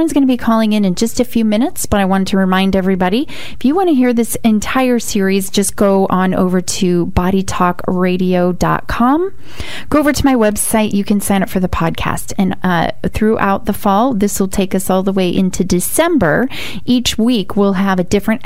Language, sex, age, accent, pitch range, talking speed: English, female, 30-49, American, 185-220 Hz, 205 wpm